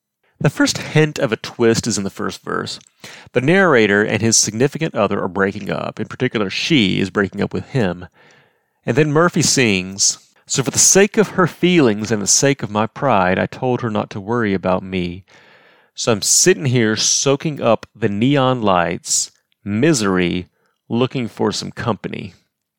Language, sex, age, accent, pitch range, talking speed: English, male, 30-49, American, 100-140 Hz, 175 wpm